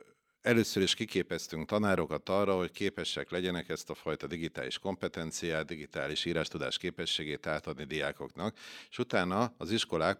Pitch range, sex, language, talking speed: 85-110 Hz, male, Hungarian, 130 wpm